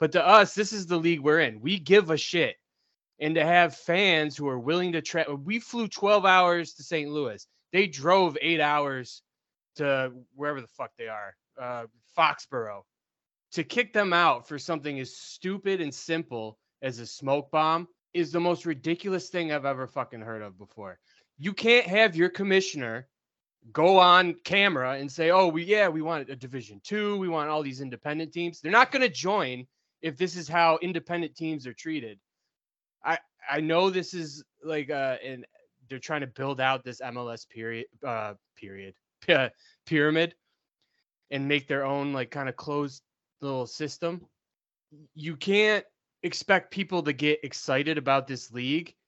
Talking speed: 175 wpm